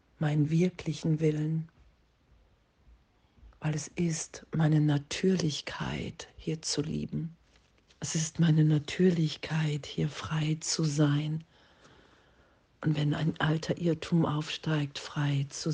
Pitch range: 145-160 Hz